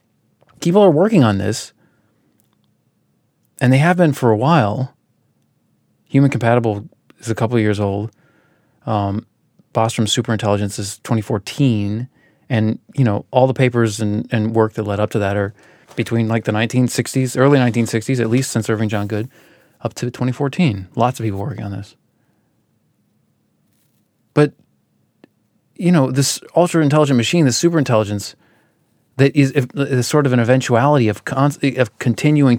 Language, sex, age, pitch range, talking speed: English, male, 30-49, 110-150 Hz, 150 wpm